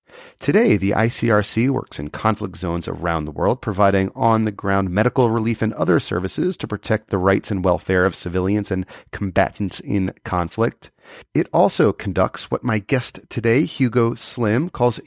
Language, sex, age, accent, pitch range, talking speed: English, male, 30-49, American, 90-120 Hz, 155 wpm